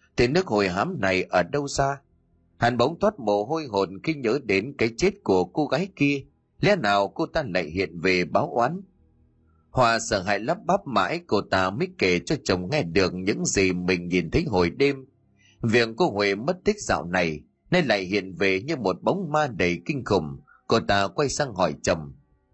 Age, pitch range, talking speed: 30-49, 95-150 Hz, 205 wpm